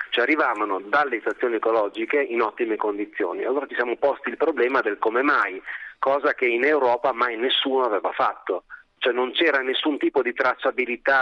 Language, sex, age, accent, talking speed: Italian, male, 40-59, native, 170 wpm